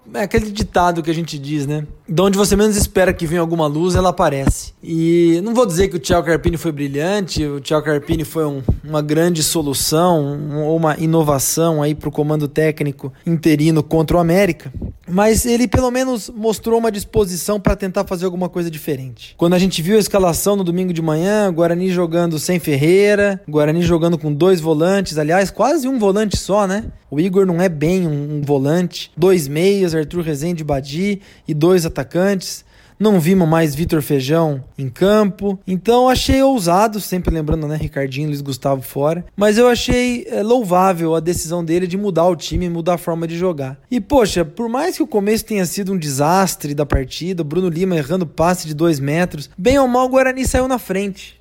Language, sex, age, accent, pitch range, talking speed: Portuguese, male, 20-39, Brazilian, 155-200 Hz, 195 wpm